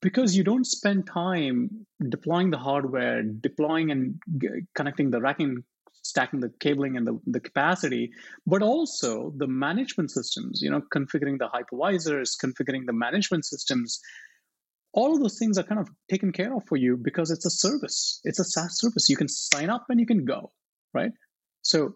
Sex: male